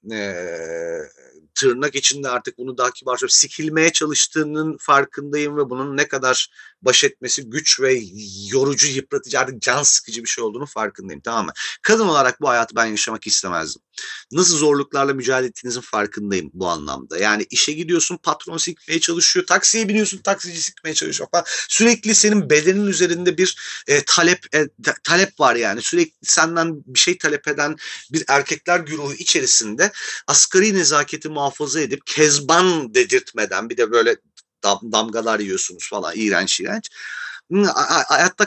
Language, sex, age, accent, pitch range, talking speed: Turkish, male, 40-59, native, 135-195 Hz, 145 wpm